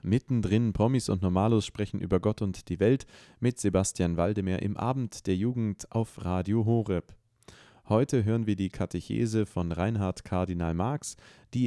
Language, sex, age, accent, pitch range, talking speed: German, male, 30-49, German, 95-115 Hz, 155 wpm